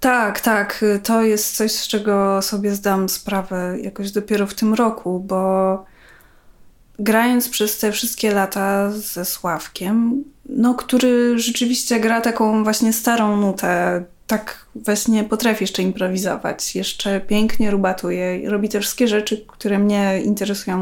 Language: Polish